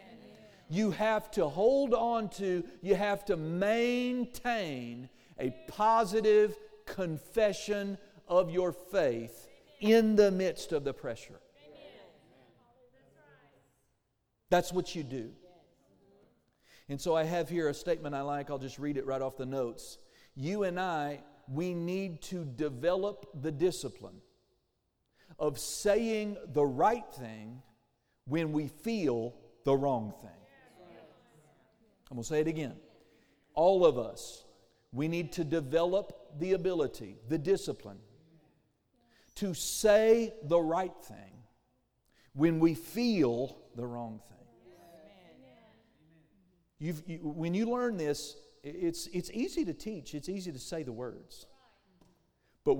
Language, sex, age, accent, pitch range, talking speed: English, male, 50-69, American, 140-205 Hz, 120 wpm